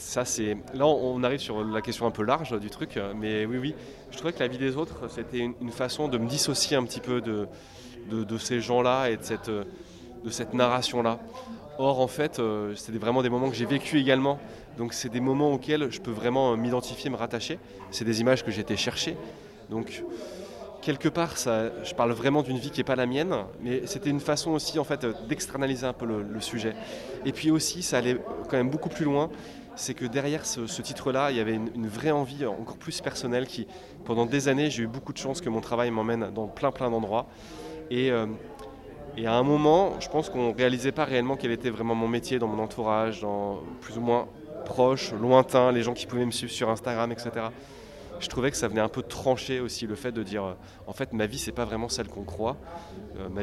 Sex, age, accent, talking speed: male, 20-39, French, 225 wpm